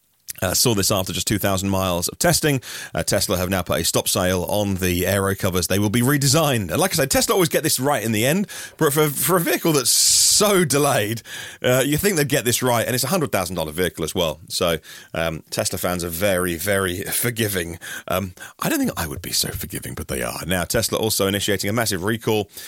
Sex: male